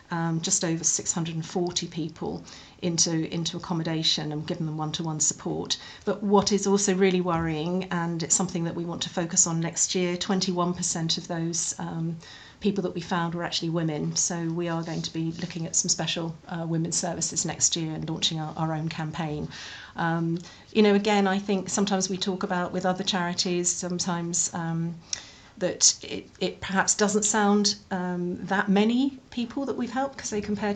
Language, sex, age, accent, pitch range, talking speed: English, female, 40-59, British, 165-200 Hz, 180 wpm